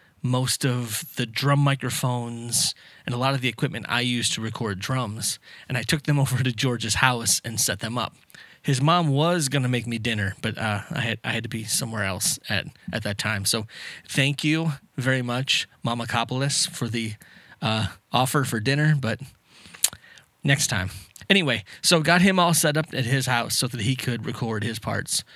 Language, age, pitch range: English, 20-39, 110-140 Hz